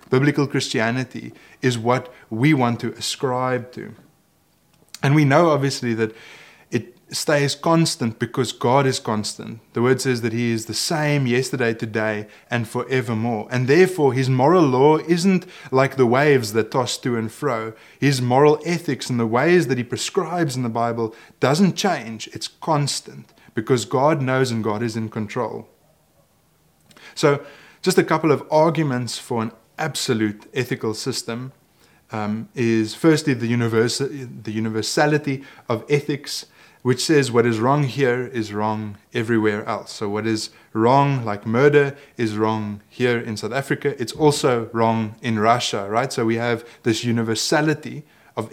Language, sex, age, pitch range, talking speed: English, male, 20-39, 115-145 Hz, 155 wpm